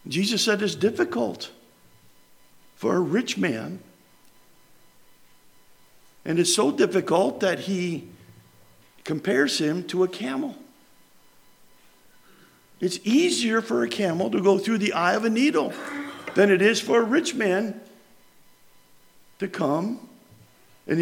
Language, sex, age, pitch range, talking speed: English, male, 50-69, 180-260 Hz, 120 wpm